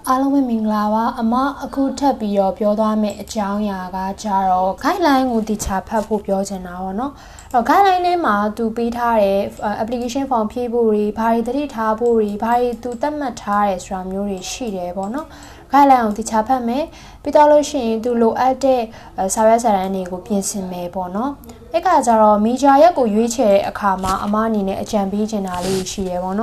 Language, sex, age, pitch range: Korean, female, 20-39, 195-255 Hz